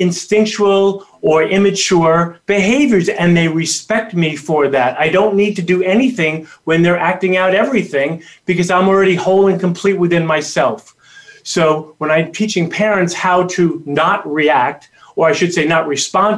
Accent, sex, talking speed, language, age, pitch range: American, male, 160 wpm, English, 30-49, 150-190 Hz